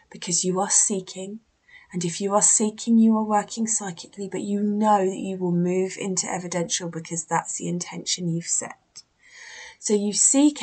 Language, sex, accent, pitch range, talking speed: English, female, British, 175-225 Hz, 175 wpm